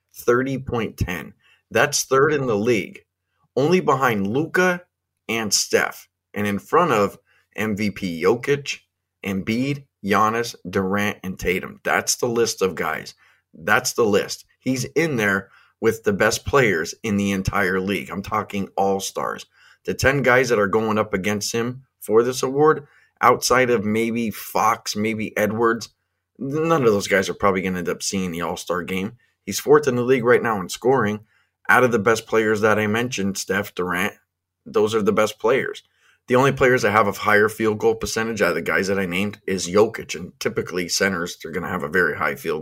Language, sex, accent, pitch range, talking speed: English, male, American, 95-120 Hz, 180 wpm